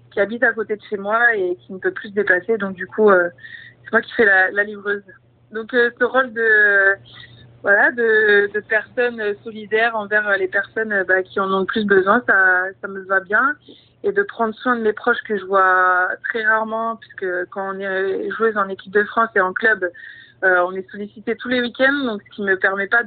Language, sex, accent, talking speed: French, female, French, 230 wpm